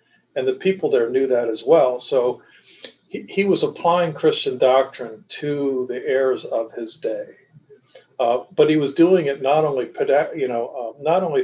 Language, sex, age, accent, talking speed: English, male, 50-69, American, 155 wpm